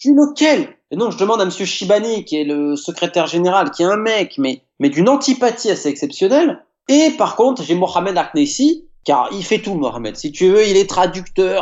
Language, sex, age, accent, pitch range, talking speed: French, male, 30-49, French, 150-220 Hz, 210 wpm